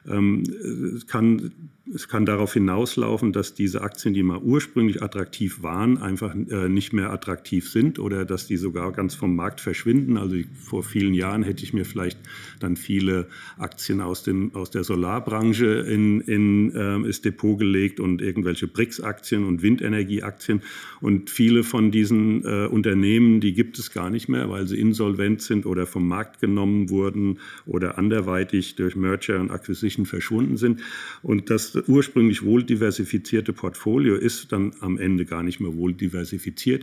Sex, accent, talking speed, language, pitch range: male, German, 165 wpm, German, 95-115 Hz